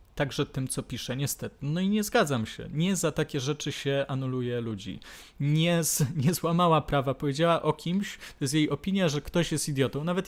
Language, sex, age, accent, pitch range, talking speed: Polish, male, 20-39, native, 130-165 Hz, 200 wpm